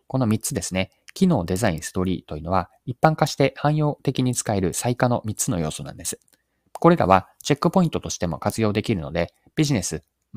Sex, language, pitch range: male, Japanese, 90-125 Hz